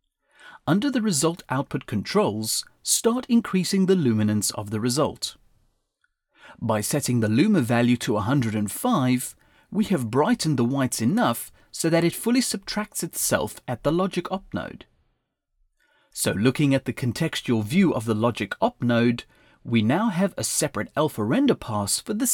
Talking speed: 155 wpm